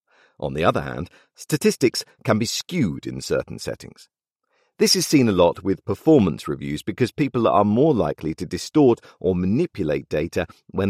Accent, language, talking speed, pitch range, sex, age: British, English, 165 wpm, 90-155 Hz, male, 50-69